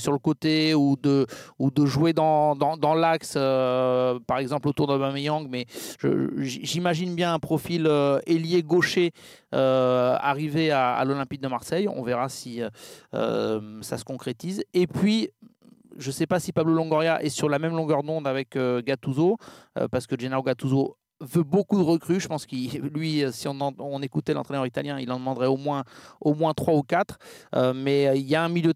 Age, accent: 30-49, French